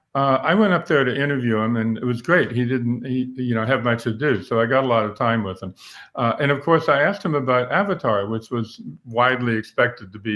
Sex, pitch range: male, 120-155 Hz